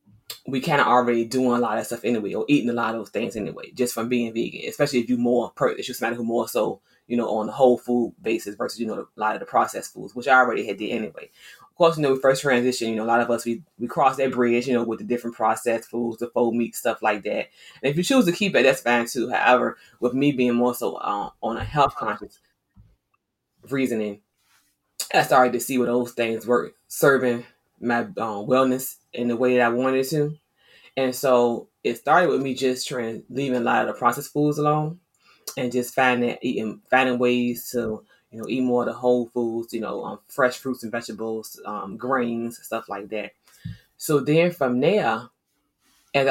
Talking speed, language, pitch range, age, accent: 225 wpm, English, 115-130 Hz, 20-39, American